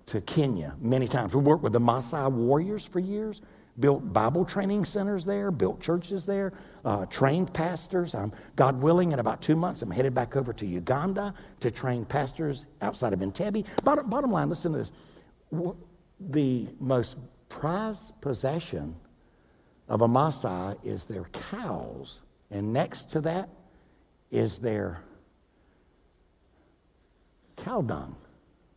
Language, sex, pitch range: English, male, 130-185 Hz